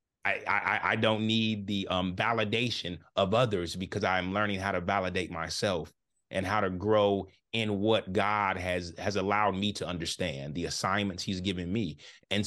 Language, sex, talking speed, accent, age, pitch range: English, male, 175 wpm, American, 30-49, 95-115 Hz